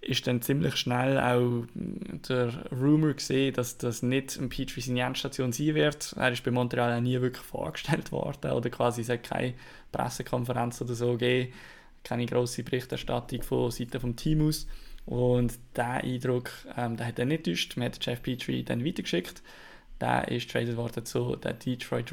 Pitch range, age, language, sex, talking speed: 120-130 Hz, 20-39, German, male, 170 wpm